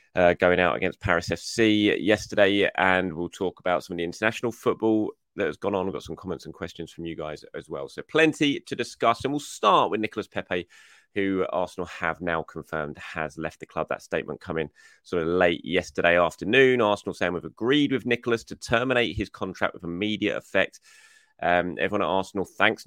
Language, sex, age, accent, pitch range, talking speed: English, male, 30-49, British, 80-105 Hz, 200 wpm